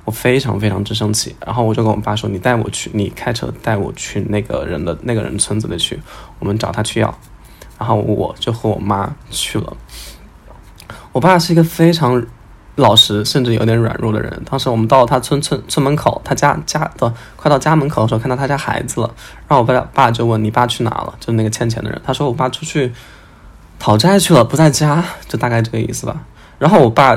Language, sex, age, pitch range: Chinese, male, 10-29, 110-135 Hz